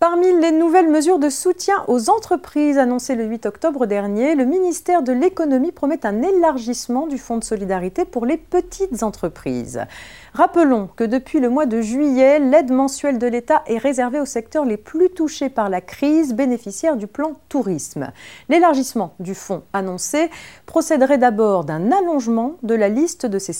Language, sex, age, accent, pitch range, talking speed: French, female, 40-59, French, 195-305 Hz, 170 wpm